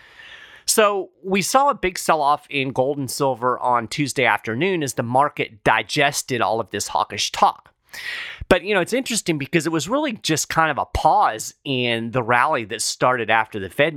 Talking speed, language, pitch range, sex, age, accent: 190 wpm, English, 110-155 Hz, male, 30-49, American